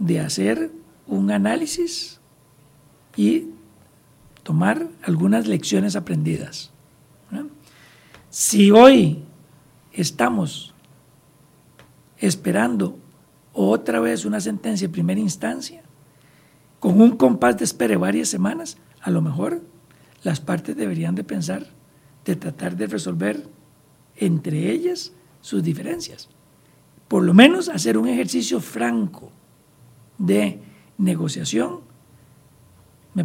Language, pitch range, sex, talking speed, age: Spanish, 125-190 Hz, male, 95 wpm, 60-79